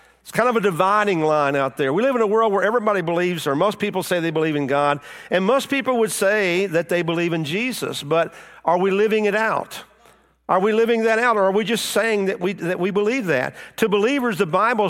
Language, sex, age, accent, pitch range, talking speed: English, male, 50-69, American, 175-220 Hz, 240 wpm